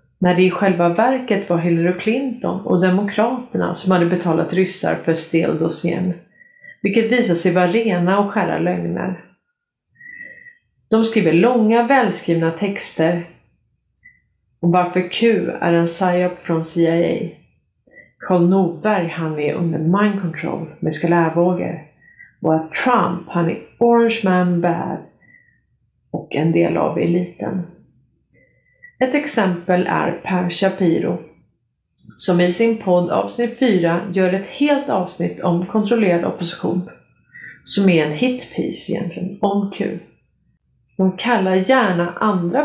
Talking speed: 120 wpm